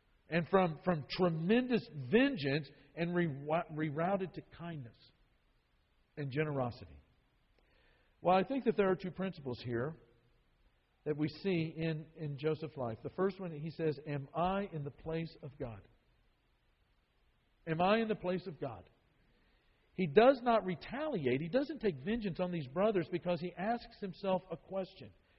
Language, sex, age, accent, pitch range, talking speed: English, male, 50-69, American, 145-195 Hz, 150 wpm